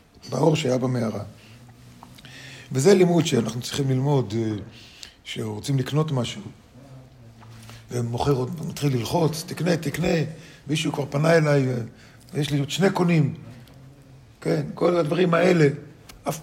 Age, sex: 50-69, male